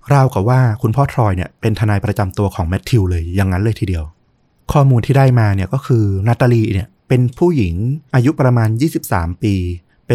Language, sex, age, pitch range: Thai, male, 30-49, 100-130 Hz